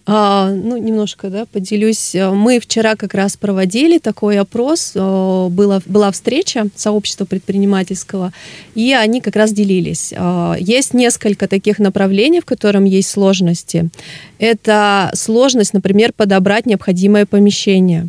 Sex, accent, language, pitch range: female, native, Russian, 170-205 Hz